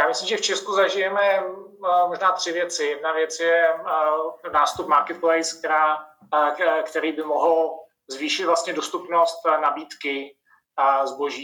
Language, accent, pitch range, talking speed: Czech, native, 145-180 Hz, 120 wpm